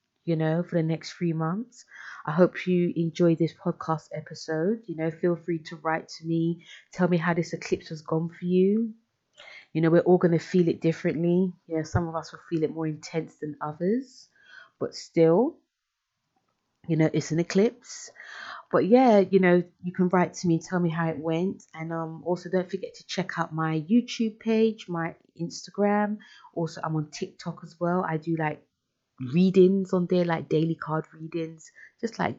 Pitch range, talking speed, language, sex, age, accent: 160-185 Hz, 195 wpm, English, female, 30-49, British